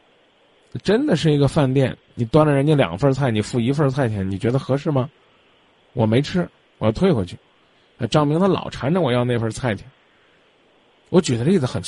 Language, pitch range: Chinese, 110-150 Hz